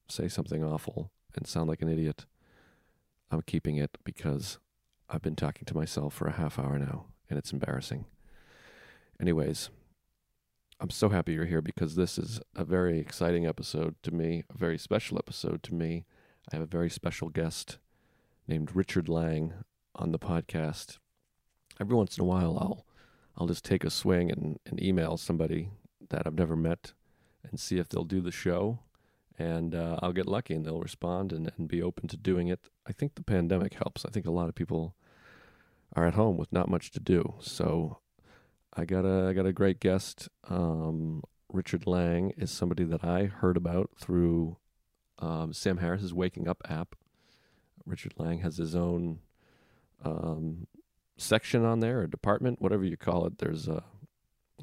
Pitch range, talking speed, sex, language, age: 80-95 Hz, 175 wpm, male, English, 40-59